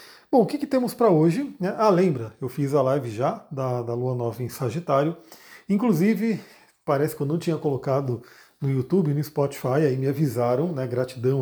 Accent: Brazilian